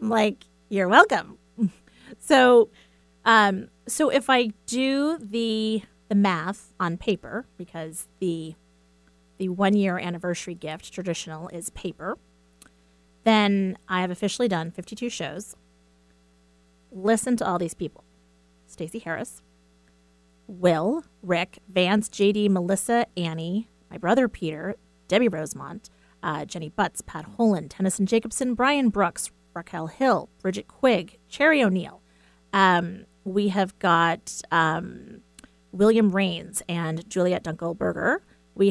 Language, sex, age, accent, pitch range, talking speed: English, female, 30-49, American, 150-215 Hz, 120 wpm